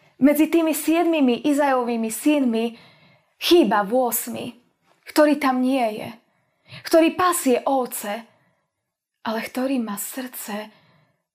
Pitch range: 220-280 Hz